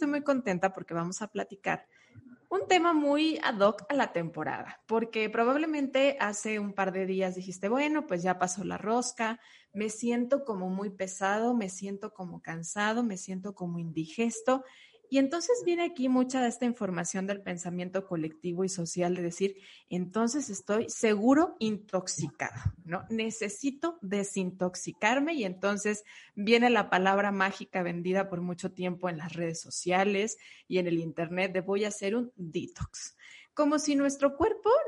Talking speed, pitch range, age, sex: 160 wpm, 180-230 Hz, 20-39, female